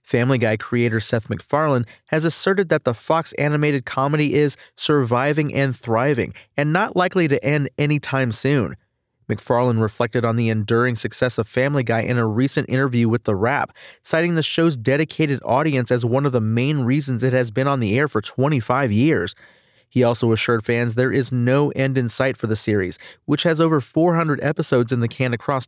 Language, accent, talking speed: English, American, 190 wpm